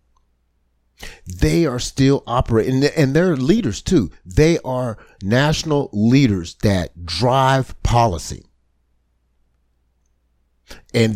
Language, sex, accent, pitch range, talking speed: English, male, American, 85-135 Hz, 85 wpm